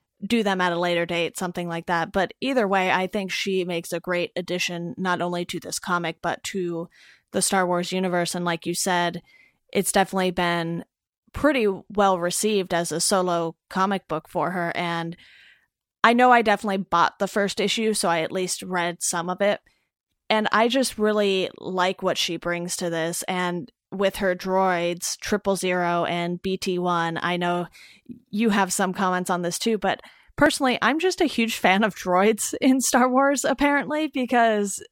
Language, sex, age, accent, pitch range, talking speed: English, female, 30-49, American, 175-210 Hz, 180 wpm